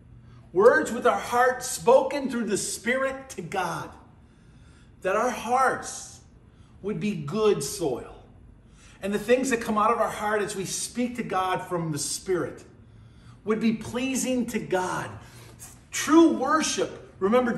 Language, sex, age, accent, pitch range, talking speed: English, male, 50-69, American, 145-245 Hz, 145 wpm